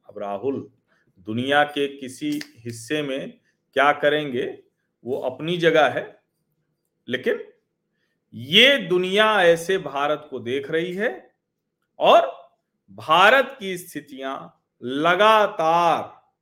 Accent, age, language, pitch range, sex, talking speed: native, 50-69, Hindi, 130-170 Hz, male, 95 wpm